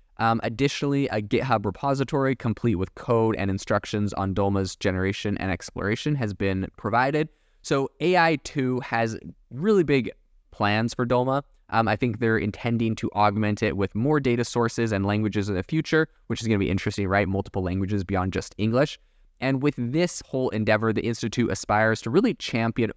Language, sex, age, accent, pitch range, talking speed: English, male, 20-39, American, 100-125 Hz, 170 wpm